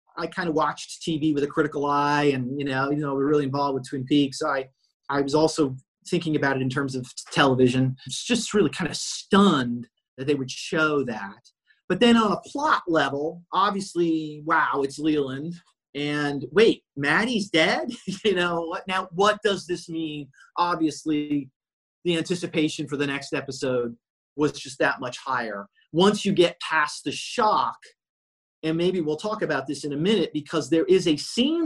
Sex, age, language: male, 30-49, English